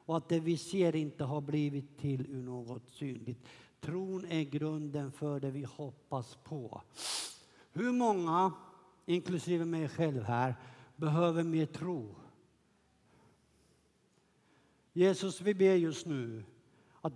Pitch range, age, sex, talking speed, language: 140-175 Hz, 60-79, male, 120 wpm, Swedish